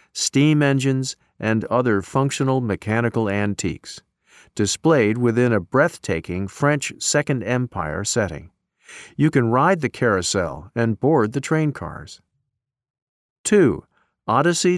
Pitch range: 110-135 Hz